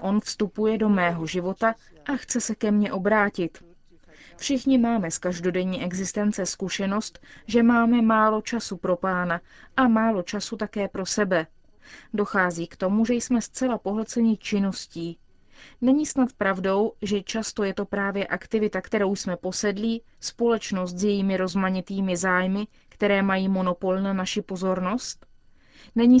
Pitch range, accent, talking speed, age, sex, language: 185-220 Hz, native, 140 wpm, 30-49, female, Czech